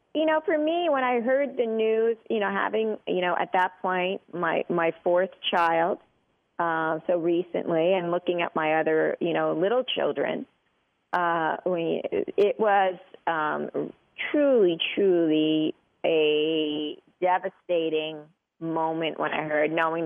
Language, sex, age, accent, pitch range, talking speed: English, female, 40-59, American, 155-210 Hz, 140 wpm